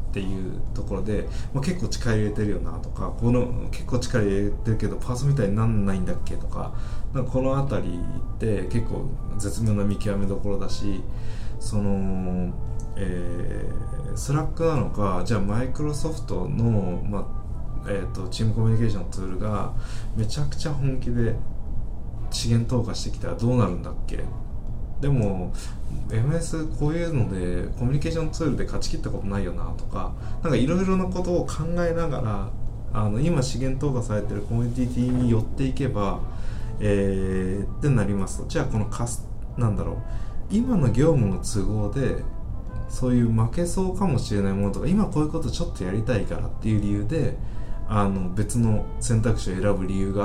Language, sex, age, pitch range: Japanese, male, 20-39, 100-125 Hz